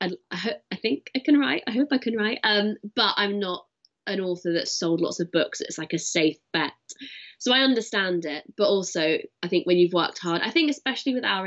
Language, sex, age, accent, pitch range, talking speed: English, female, 20-39, British, 160-205 Hz, 230 wpm